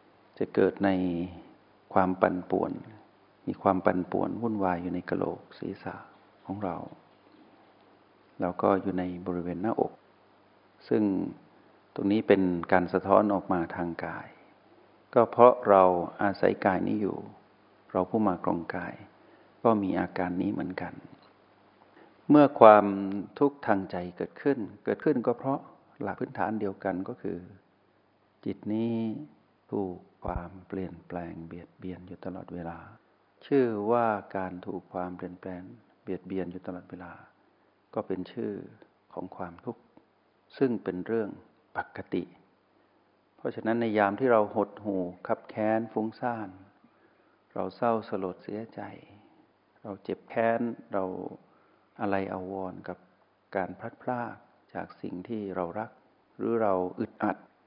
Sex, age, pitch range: male, 60-79, 90-110 Hz